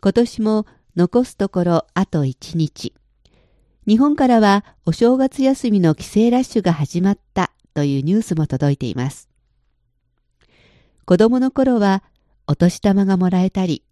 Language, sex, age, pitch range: Japanese, female, 50-69, 155-230 Hz